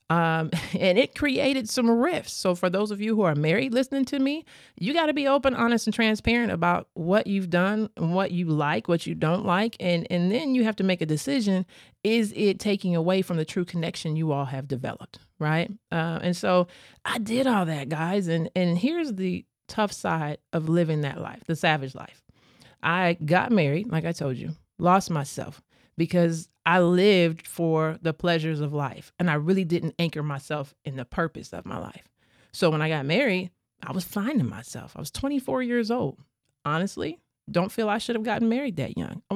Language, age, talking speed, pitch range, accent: English, 30-49, 205 wpm, 160-205 Hz, American